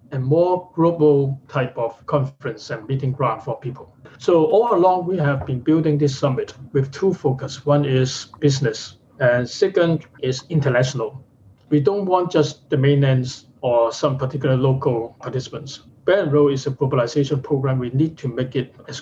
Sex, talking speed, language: male, 165 wpm, English